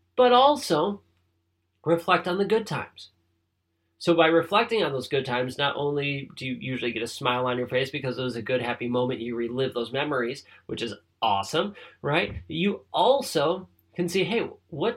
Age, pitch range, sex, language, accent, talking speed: 30-49, 120-180 Hz, male, English, American, 185 wpm